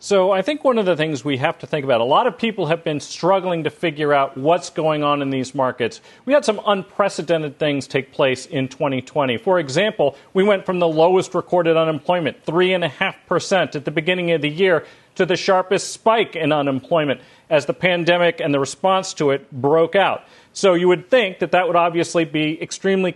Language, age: English, 40-59